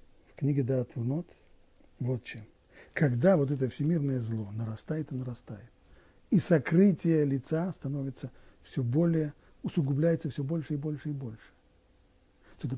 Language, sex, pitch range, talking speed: Russian, male, 115-170 Hz, 130 wpm